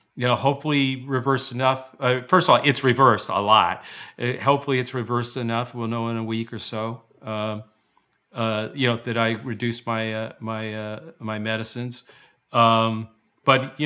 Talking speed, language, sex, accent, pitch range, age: 180 wpm, English, male, American, 115-130 Hz, 50-69